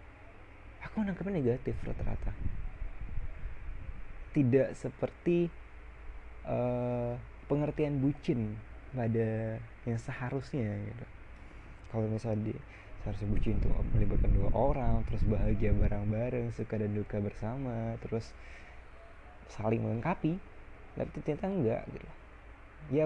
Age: 20-39